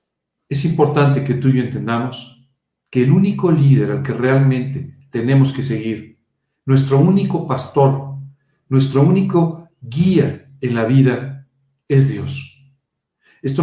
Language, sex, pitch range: Spanish, male, 120-145 Hz